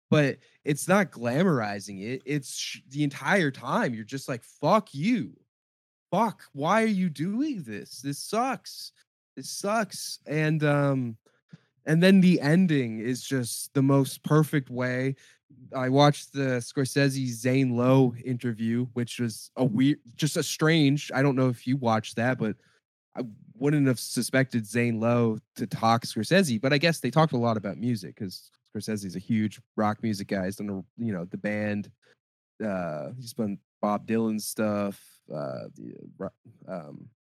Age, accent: 20-39, American